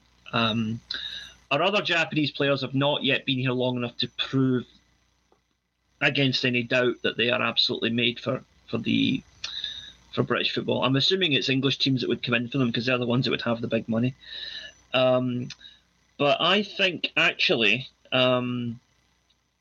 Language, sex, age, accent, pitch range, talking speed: English, male, 30-49, British, 120-140 Hz, 170 wpm